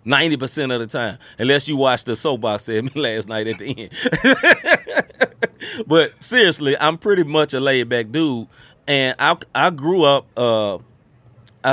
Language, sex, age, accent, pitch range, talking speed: English, male, 30-49, American, 120-155 Hz, 160 wpm